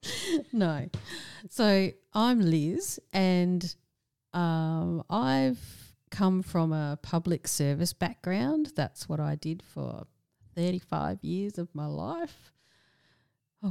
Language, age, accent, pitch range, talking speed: English, 40-59, Australian, 150-190 Hz, 105 wpm